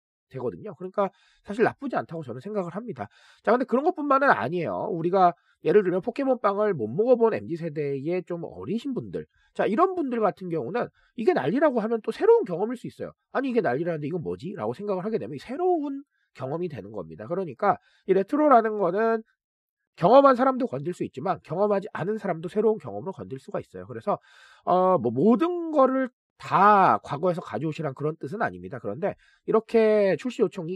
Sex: male